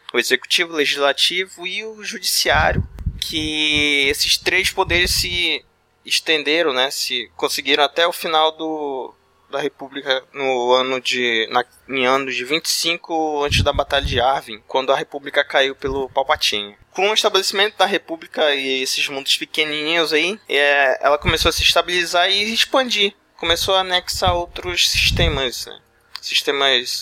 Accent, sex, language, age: Brazilian, male, Portuguese, 20-39